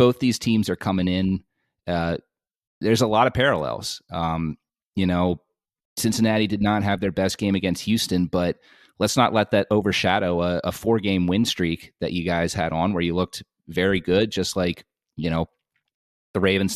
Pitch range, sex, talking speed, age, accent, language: 85-105 Hz, male, 185 wpm, 30-49, American, English